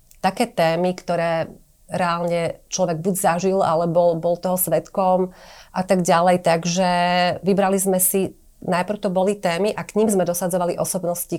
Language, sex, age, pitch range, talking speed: Slovak, female, 30-49, 170-185 Hz, 155 wpm